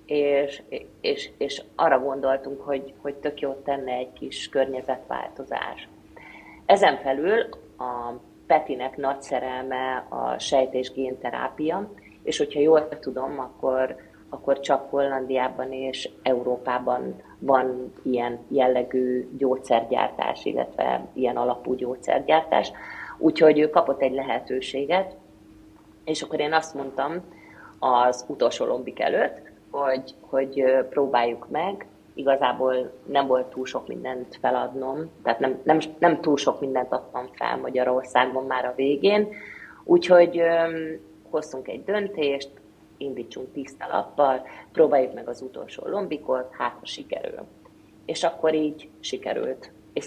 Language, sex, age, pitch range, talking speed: Hungarian, female, 30-49, 130-145 Hz, 115 wpm